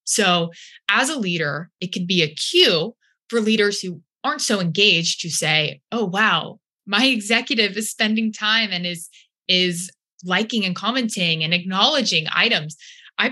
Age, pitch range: 20-39, 170-225 Hz